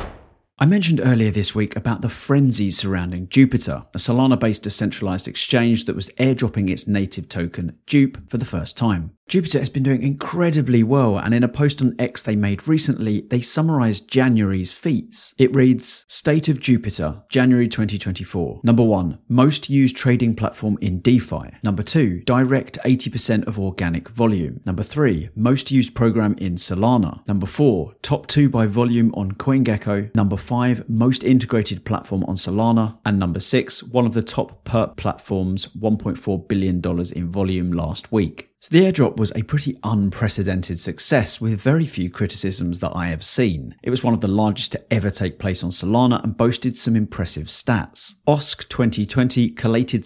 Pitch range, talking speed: 95-125 Hz, 165 wpm